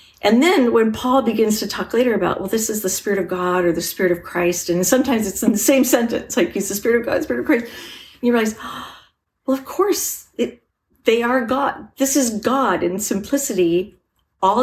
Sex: female